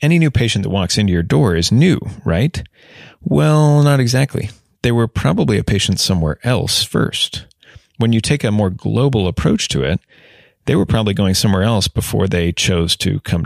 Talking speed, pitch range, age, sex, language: 185 wpm, 95-120 Hz, 30-49, male, English